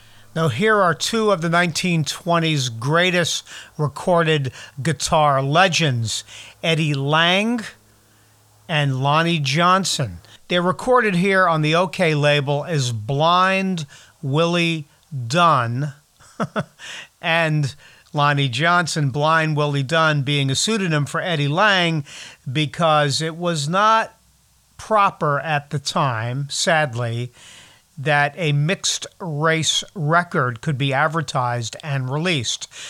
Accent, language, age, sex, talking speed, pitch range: American, English, 50-69, male, 105 wpm, 140-170 Hz